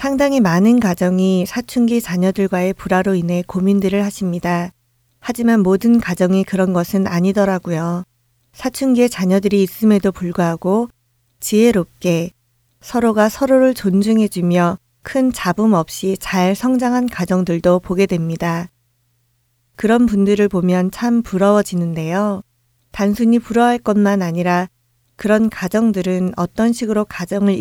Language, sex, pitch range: Korean, female, 170-210 Hz